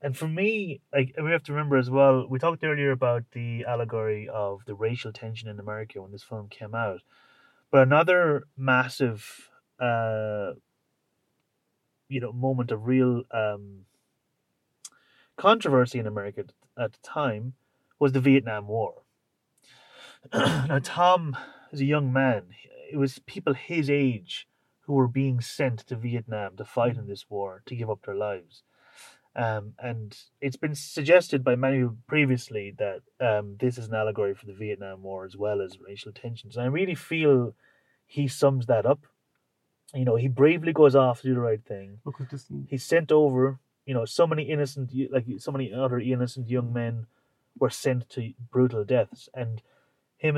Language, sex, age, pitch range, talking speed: English, male, 30-49, 115-140 Hz, 165 wpm